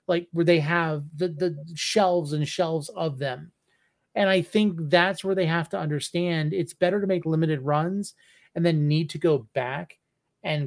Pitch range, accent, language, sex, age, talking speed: 150-180 Hz, American, English, male, 30-49, 185 wpm